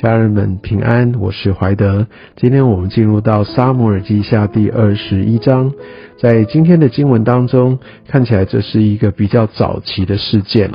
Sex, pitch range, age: male, 100-120 Hz, 50-69